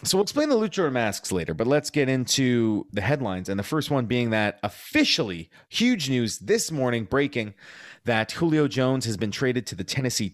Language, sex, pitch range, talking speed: English, male, 105-145 Hz, 195 wpm